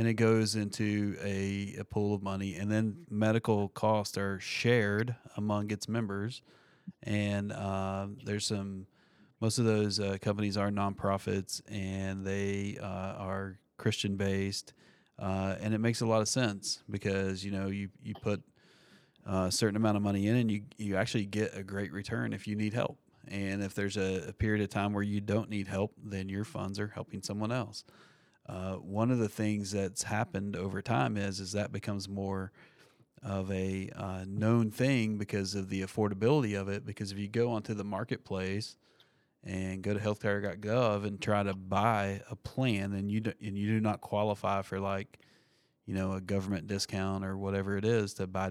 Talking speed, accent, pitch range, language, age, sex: 185 wpm, American, 95-110 Hz, English, 30-49, male